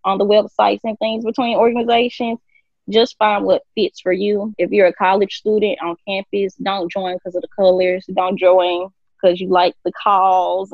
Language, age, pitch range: English, 10-29, 175-205 Hz